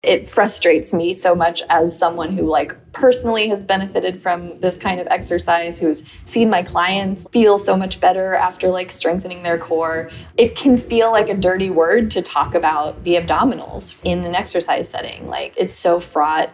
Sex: female